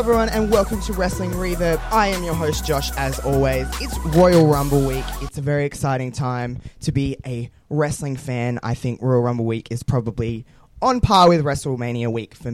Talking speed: 195 wpm